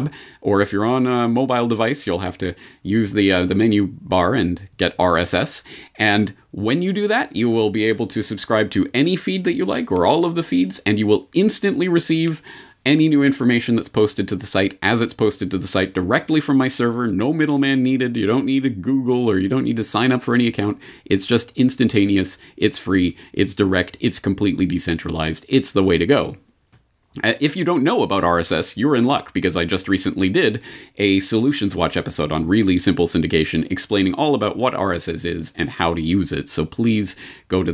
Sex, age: male, 30-49